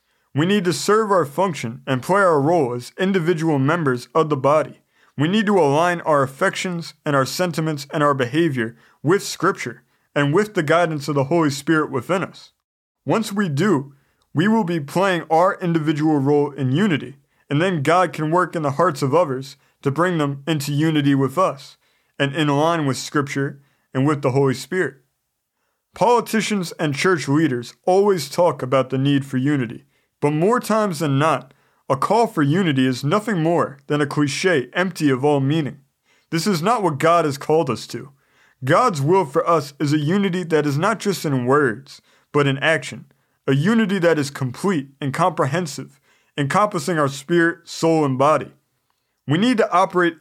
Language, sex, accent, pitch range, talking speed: English, male, American, 140-180 Hz, 180 wpm